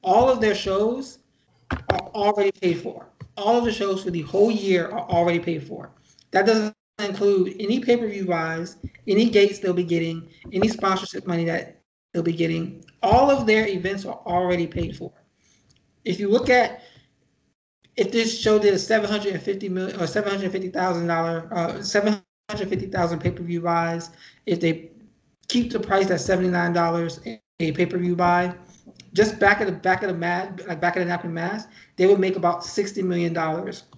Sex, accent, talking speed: male, American, 160 wpm